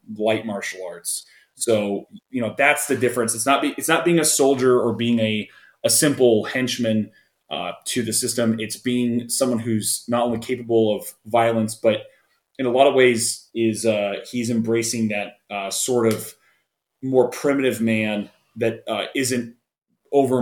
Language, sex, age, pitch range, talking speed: English, male, 30-49, 110-125 Hz, 165 wpm